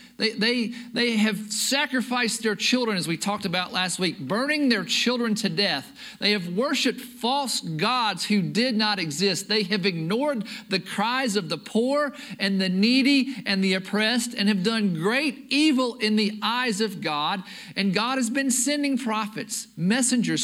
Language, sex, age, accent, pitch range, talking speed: English, male, 50-69, American, 185-240 Hz, 165 wpm